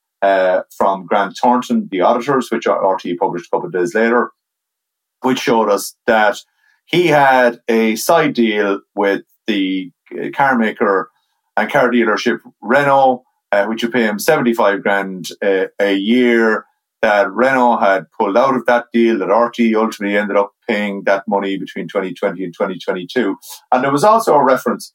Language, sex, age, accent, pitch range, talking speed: English, male, 30-49, Irish, 100-125 Hz, 160 wpm